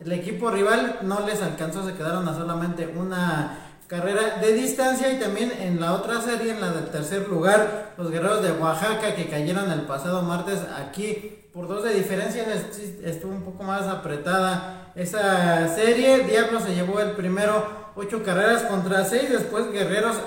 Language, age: Spanish, 40-59